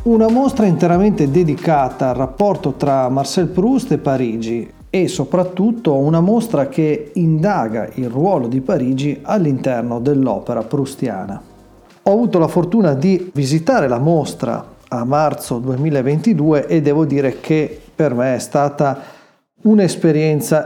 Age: 40-59